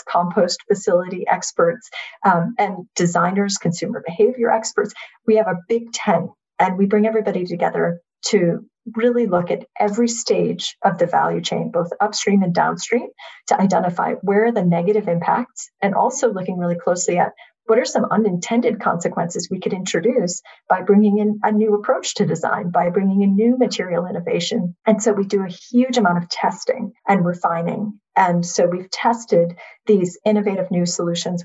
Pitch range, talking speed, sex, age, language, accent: 175-220 Hz, 165 wpm, female, 40-59, English, American